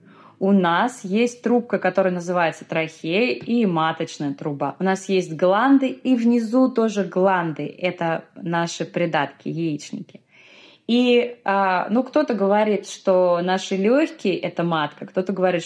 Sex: female